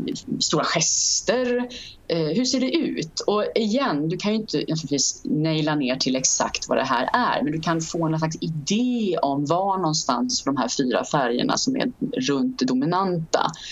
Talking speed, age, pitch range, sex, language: 170 wpm, 30-49, 140-220 Hz, female, Swedish